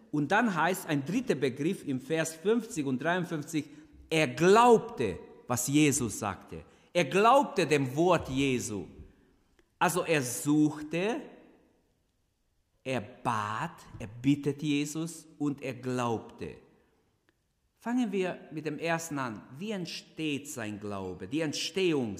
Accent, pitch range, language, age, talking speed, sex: German, 105-150 Hz, German, 50-69, 120 wpm, male